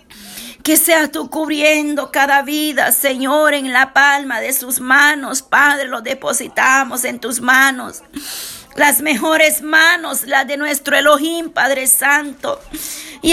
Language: Spanish